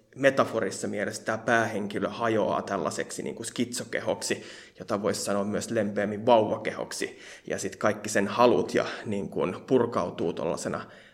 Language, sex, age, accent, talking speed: Finnish, male, 20-39, native, 115 wpm